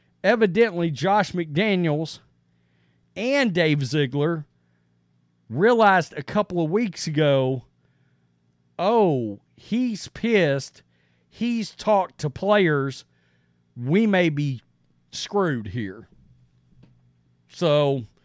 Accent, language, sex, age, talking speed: American, English, male, 40-59, 80 wpm